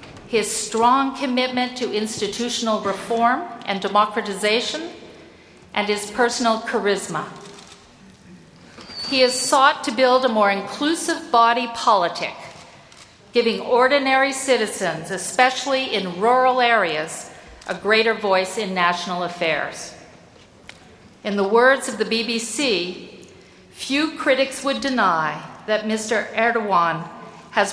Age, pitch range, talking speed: 50-69, 195-250 Hz, 105 wpm